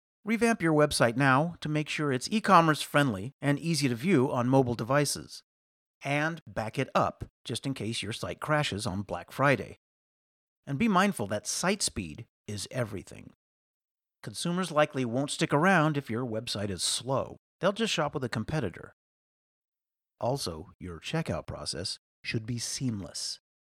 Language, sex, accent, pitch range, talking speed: English, male, American, 110-155 Hz, 155 wpm